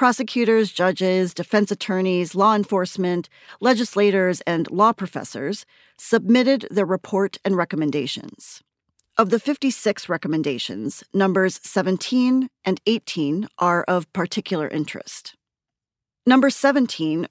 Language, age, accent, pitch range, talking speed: English, 40-59, American, 170-220 Hz, 100 wpm